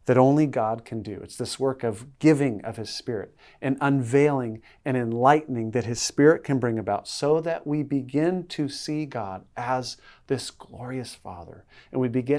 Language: English